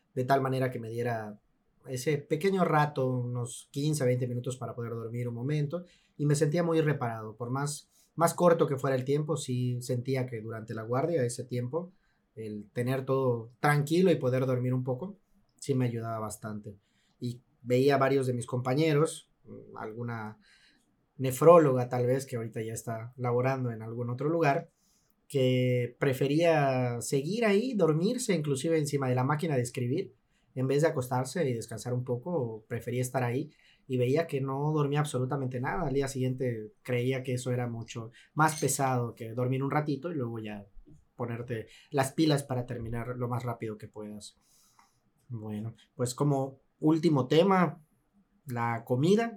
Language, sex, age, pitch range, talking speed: Spanish, male, 30-49, 120-150 Hz, 165 wpm